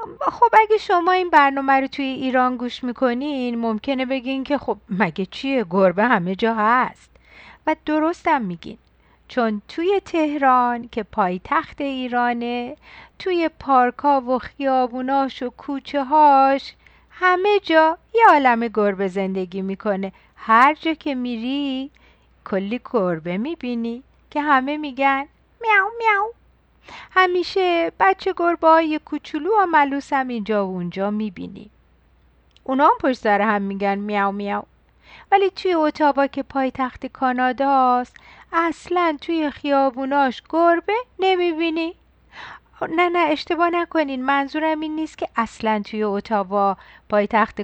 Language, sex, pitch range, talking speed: Persian, female, 210-315 Hz, 125 wpm